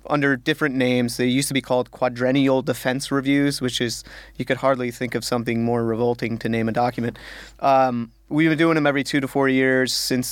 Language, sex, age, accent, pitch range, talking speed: English, male, 30-49, American, 125-140 Hz, 210 wpm